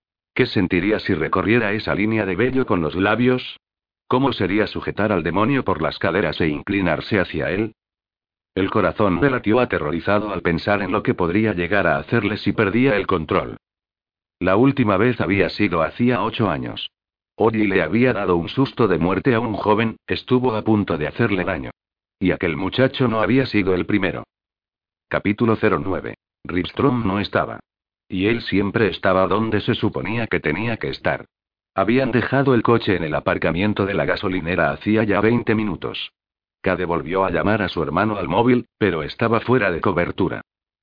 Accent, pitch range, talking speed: Spanish, 95-115 Hz, 175 wpm